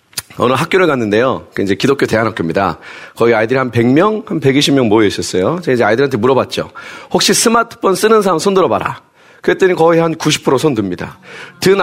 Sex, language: male, Korean